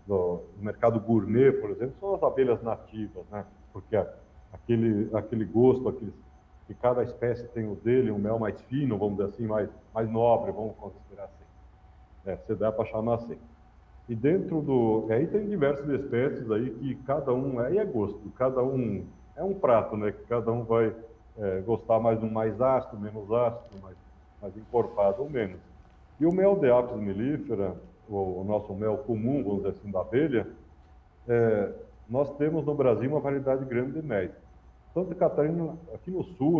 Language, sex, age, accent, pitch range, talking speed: Portuguese, male, 60-79, Brazilian, 100-130 Hz, 180 wpm